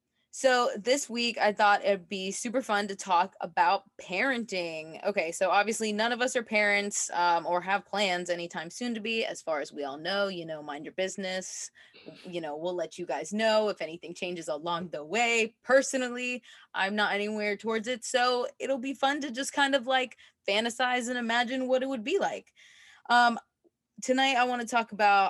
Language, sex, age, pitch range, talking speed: English, female, 20-39, 180-225 Hz, 195 wpm